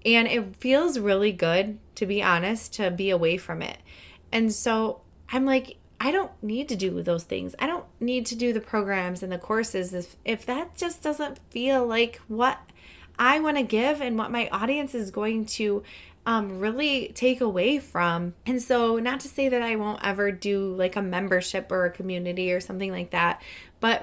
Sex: female